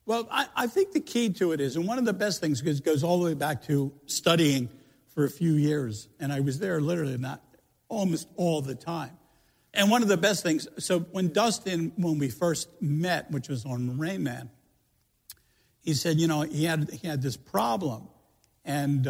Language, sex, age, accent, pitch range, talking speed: English, male, 60-79, American, 140-180 Hz, 205 wpm